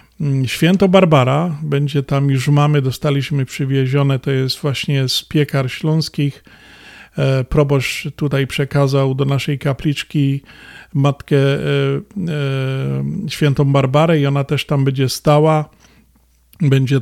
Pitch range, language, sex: 135-150 Hz, Polish, male